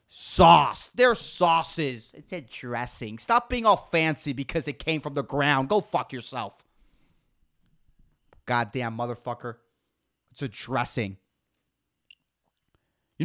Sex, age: male, 30-49